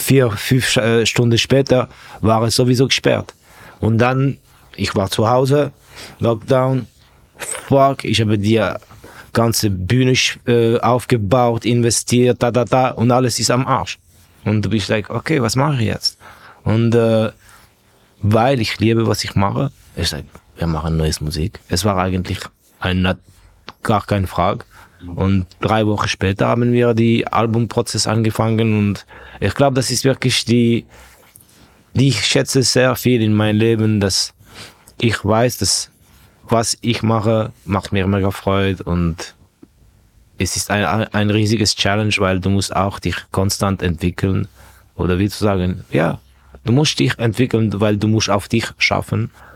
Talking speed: 150 wpm